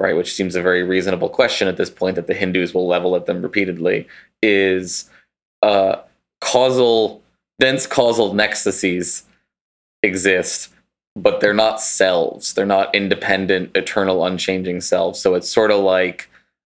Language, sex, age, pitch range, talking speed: English, male, 20-39, 95-110 Hz, 145 wpm